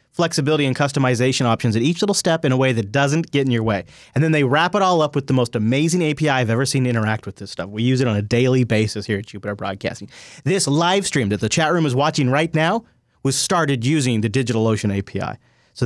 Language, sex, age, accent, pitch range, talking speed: English, male, 30-49, American, 115-150 Hz, 245 wpm